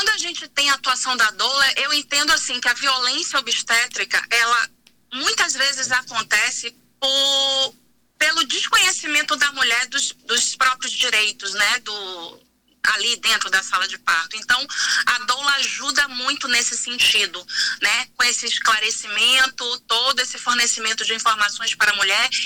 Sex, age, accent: female, 30-49, Brazilian